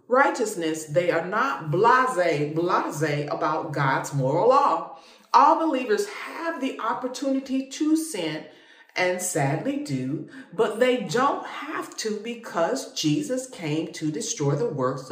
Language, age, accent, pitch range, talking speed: English, 40-59, American, 160-260 Hz, 125 wpm